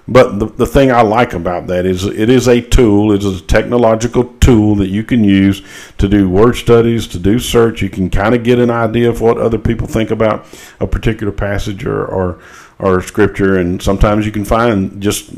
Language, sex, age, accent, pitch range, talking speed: English, male, 50-69, American, 90-110 Hz, 215 wpm